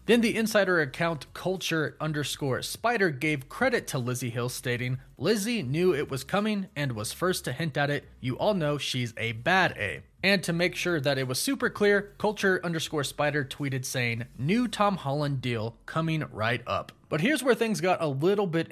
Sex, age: male, 30-49